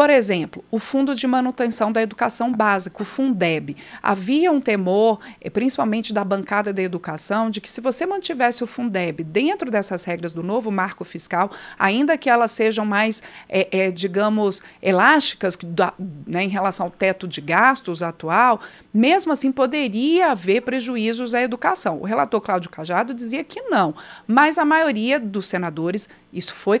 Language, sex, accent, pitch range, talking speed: Portuguese, female, Brazilian, 195-255 Hz, 155 wpm